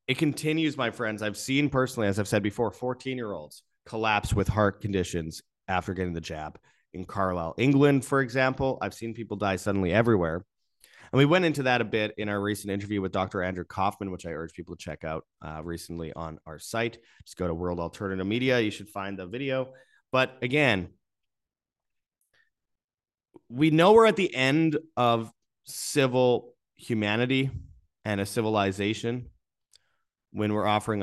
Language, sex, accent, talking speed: English, male, American, 165 wpm